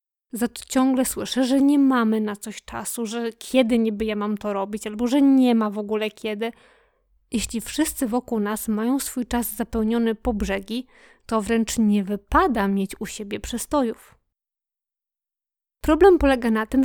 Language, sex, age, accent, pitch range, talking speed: Polish, female, 20-39, native, 220-255 Hz, 165 wpm